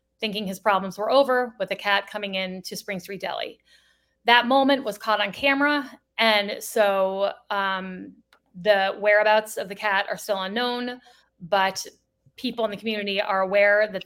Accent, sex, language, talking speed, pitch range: American, female, English, 165 wpm, 195-225 Hz